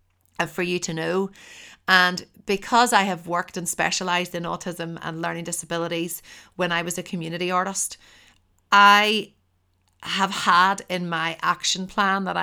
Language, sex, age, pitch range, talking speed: English, female, 30-49, 165-185 Hz, 145 wpm